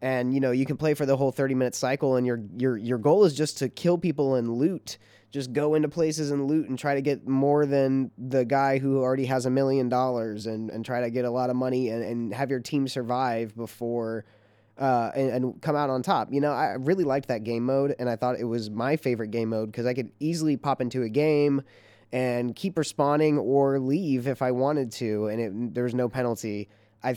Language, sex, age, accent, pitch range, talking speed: English, male, 20-39, American, 115-135 Hz, 235 wpm